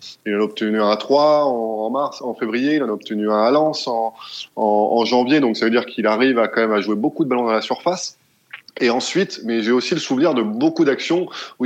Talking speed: 255 wpm